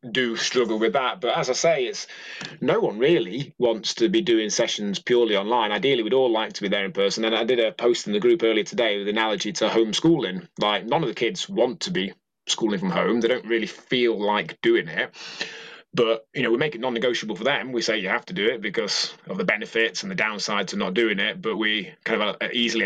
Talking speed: 245 wpm